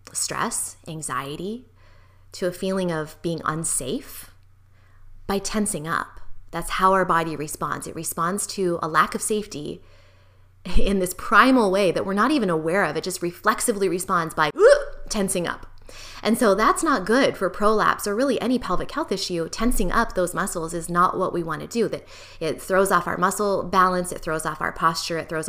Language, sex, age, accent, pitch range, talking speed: English, female, 20-39, American, 160-205 Hz, 180 wpm